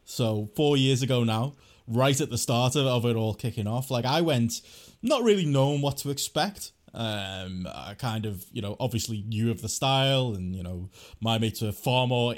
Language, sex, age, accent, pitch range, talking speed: English, male, 20-39, British, 110-145 Hz, 205 wpm